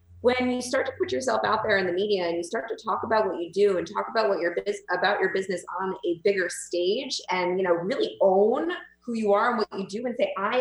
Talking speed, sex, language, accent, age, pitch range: 270 wpm, female, English, American, 30-49, 185-225 Hz